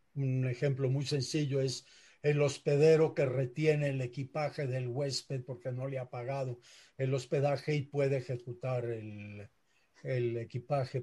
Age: 50-69